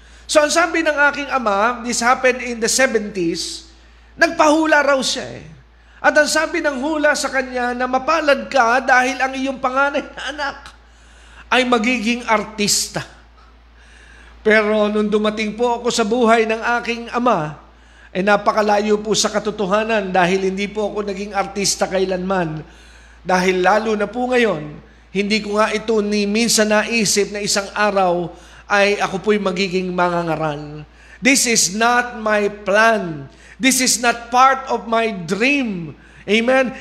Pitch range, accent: 200-265 Hz, native